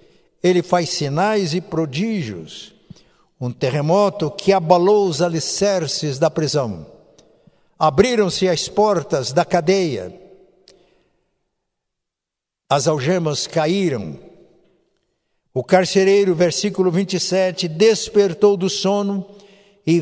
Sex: male